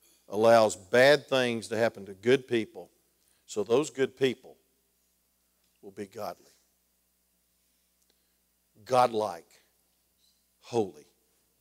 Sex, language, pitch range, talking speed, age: male, English, 100-130 Hz, 90 wpm, 50-69